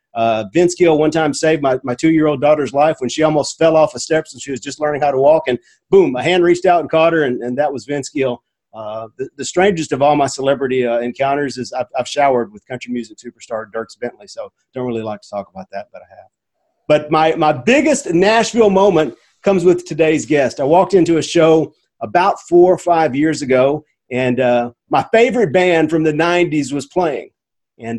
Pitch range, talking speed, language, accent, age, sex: 140-180 Hz, 225 wpm, English, American, 40-59, male